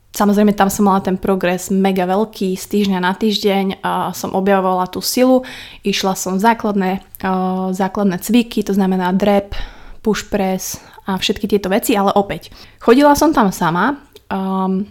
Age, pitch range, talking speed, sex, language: 20-39, 190-220 Hz, 155 wpm, female, Slovak